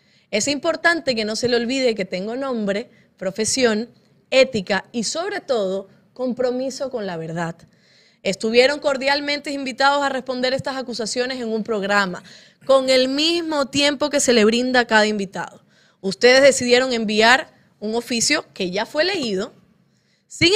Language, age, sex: Spanish, 20-39, female